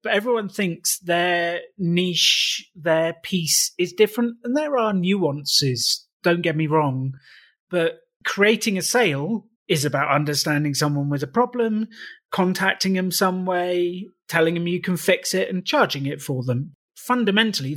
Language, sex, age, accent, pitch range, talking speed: English, male, 30-49, British, 140-185 Hz, 150 wpm